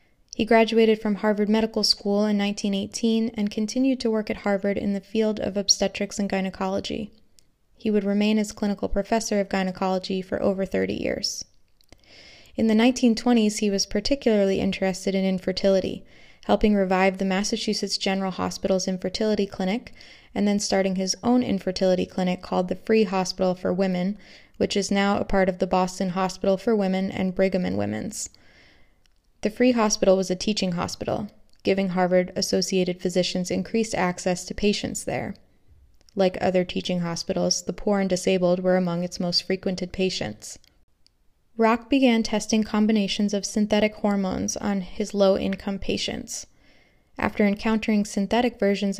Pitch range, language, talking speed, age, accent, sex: 185-215 Hz, English, 150 wpm, 20-39, American, female